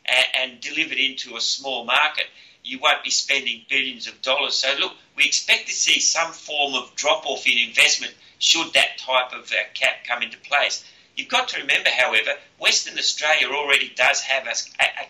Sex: male